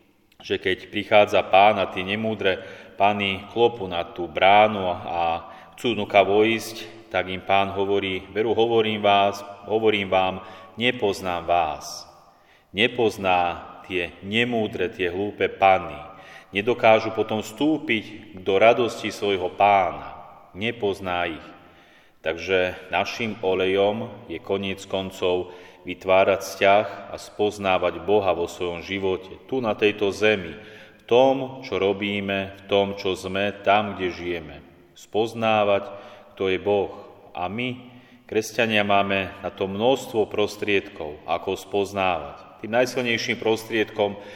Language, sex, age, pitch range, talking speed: Slovak, male, 30-49, 95-110 Hz, 120 wpm